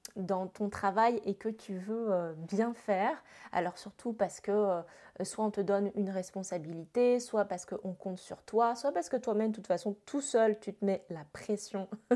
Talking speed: 190 wpm